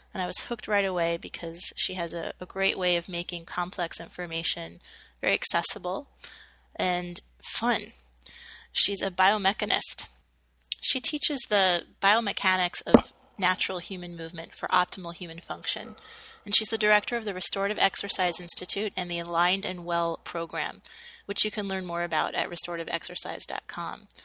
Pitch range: 170-200 Hz